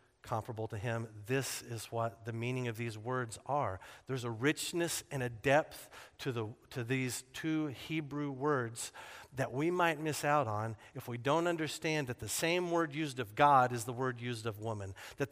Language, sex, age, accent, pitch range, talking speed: English, male, 50-69, American, 115-150 Hz, 190 wpm